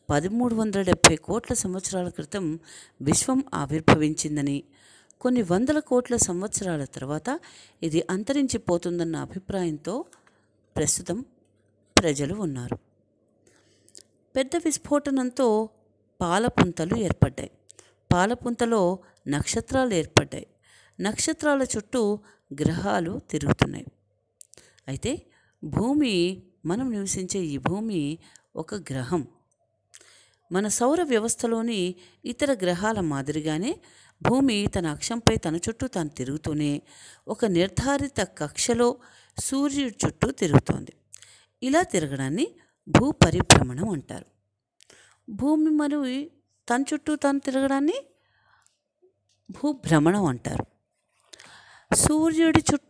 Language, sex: English, female